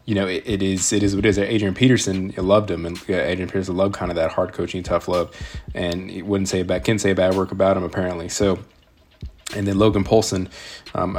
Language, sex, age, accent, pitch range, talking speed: English, male, 20-39, American, 95-105 Hz, 235 wpm